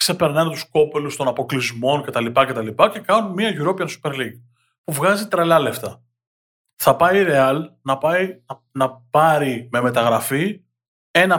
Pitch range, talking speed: 120-160 Hz, 140 wpm